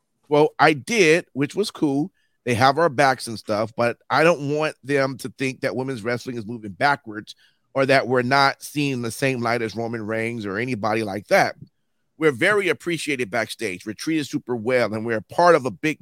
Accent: American